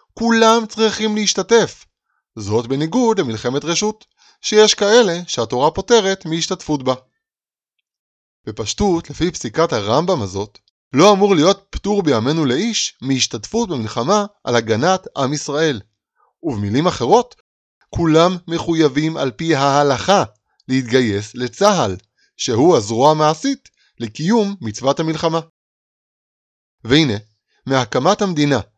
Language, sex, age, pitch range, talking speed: Hebrew, male, 20-39, 115-190 Hz, 100 wpm